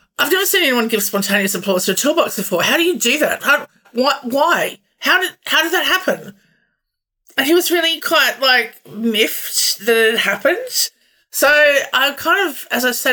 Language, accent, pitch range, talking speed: English, Australian, 185-245 Hz, 190 wpm